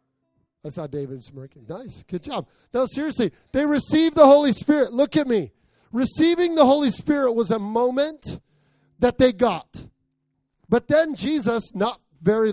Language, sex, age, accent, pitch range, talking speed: English, male, 40-59, American, 140-220 Hz, 155 wpm